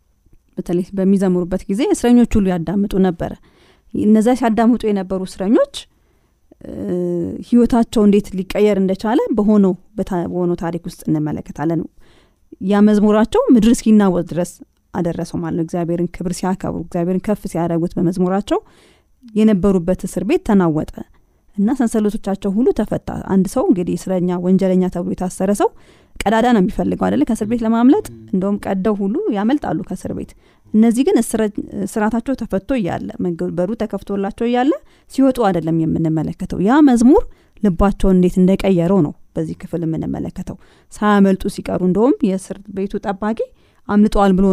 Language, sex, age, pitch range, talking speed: Amharic, female, 20-39, 180-220 Hz, 80 wpm